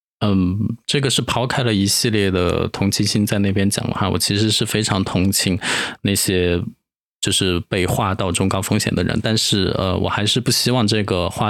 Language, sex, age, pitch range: Chinese, male, 20-39, 95-110 Hz